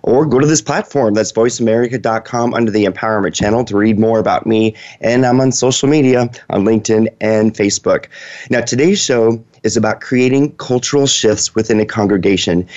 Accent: American